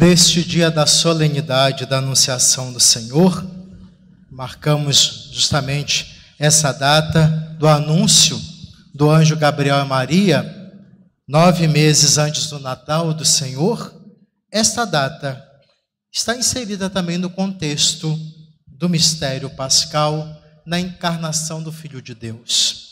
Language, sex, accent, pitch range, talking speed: Portuguese, male, Brazilian, 150-200 Hz, 110 wpm